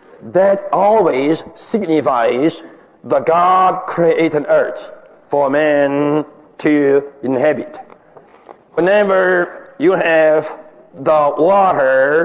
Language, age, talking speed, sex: English, 60-79, 75 wpm, male